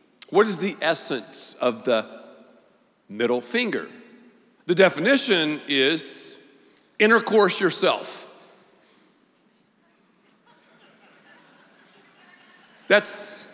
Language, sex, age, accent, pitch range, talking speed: English, male, 50-69, American, 135-195 Hz, 60 wpm